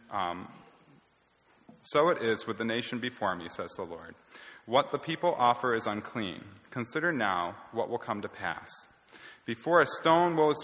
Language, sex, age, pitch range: English, male, 30-49, 105-140 Hz